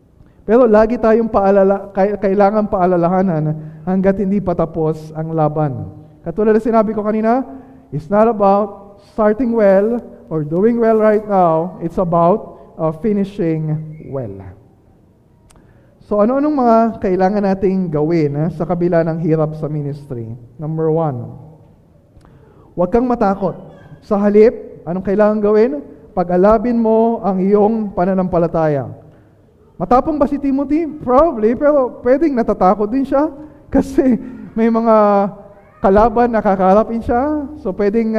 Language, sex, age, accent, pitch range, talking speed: Filipino, male, 20-39, native, 180-225 Hz, 125 wpm